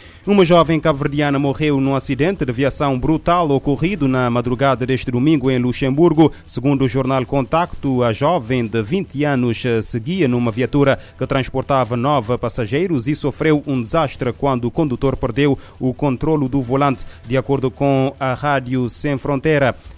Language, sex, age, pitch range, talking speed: Portuguese, male, 30-49, 125-145 Hz, 155 wpm